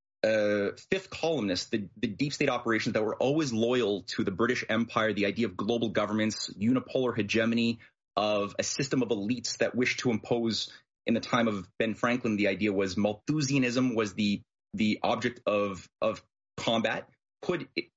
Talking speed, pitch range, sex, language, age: 170 wpm, 105-125 Hz, male, English, 30-49